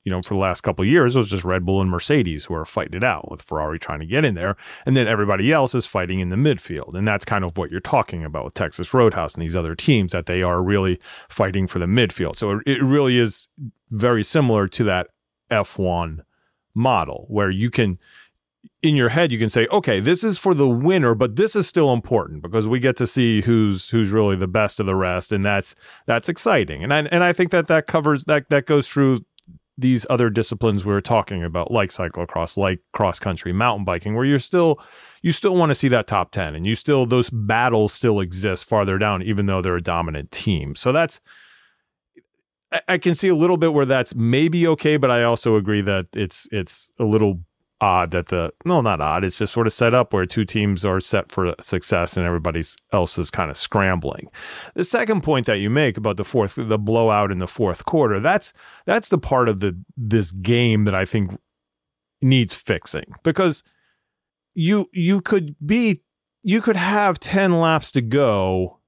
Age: 30-49